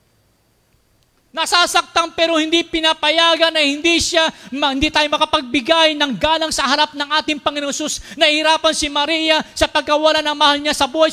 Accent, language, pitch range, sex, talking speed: native, Filipino, 225-315 Hz, male, 150 wpm